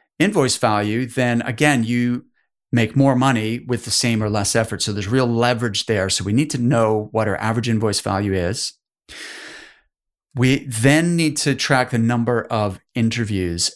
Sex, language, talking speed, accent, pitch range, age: male, English, 170 wpm, American, 110-135 Hz, 30-49